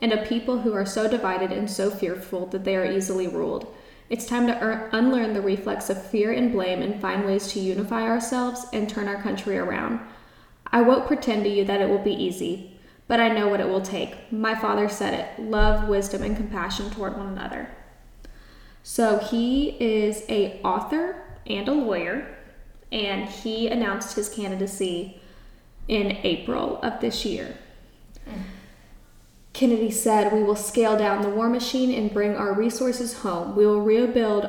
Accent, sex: American, female